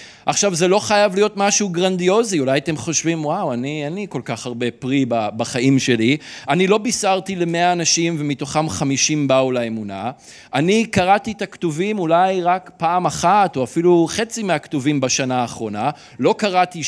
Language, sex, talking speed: Hebrew, male, 155 wpm